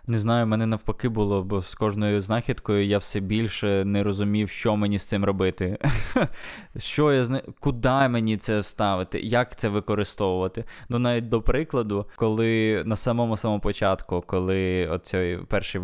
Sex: male